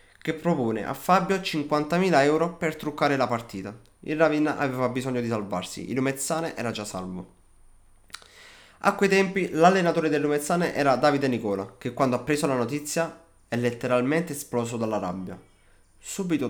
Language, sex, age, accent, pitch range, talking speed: Italian, male, 20-39, native, 100-150 Hz, 155 wpm